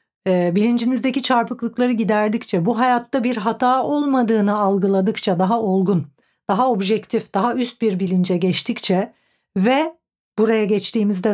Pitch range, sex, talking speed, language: 195-235 Hz, female, 110 wpm, Turkish